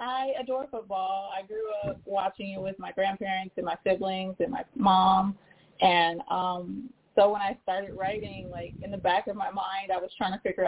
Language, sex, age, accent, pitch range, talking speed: English, female, 20-39, American, 195-250 Hz, 200 wpm